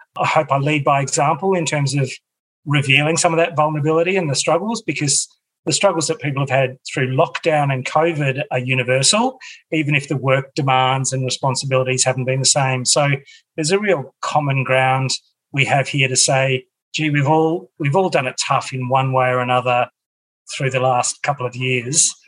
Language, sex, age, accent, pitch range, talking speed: English, male, 30-49, Australian, 130-160 Hz, 190 wpm